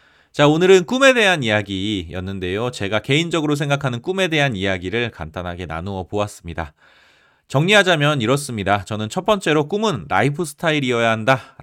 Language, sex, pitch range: Korean, male, 95-150 Hz